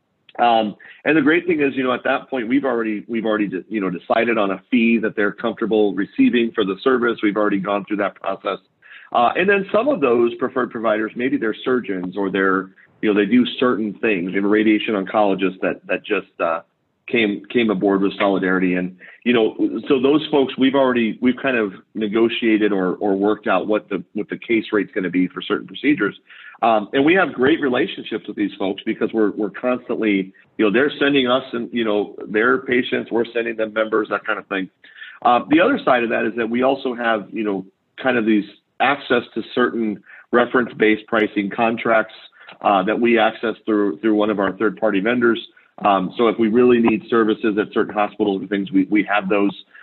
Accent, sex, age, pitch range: American, male, 40-59, 100-120 Hz